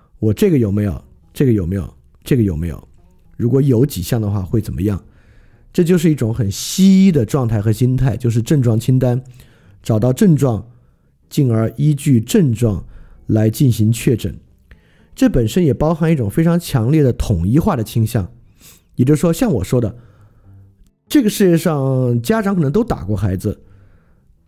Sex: male